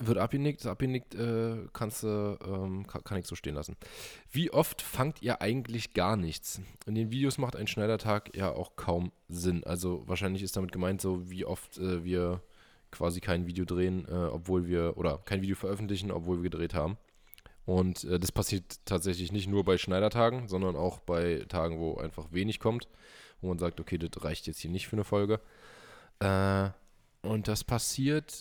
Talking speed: 180 wpm